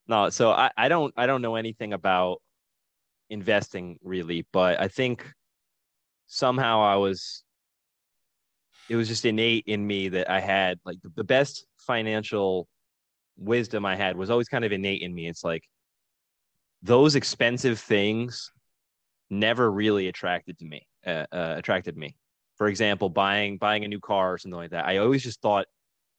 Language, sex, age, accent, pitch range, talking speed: English, male, 20-39, American, 95-115 Hz, 160 wpm